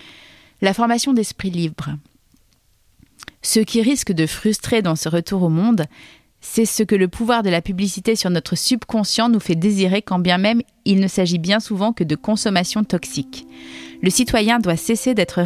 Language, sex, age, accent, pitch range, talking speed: French, female, 30-49, French, 175-220 Hz, 175 wpm